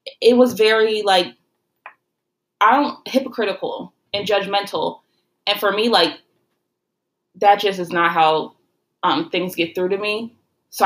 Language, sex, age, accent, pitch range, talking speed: English, female, 20-39, American, 175-220 Hz, 140 wpm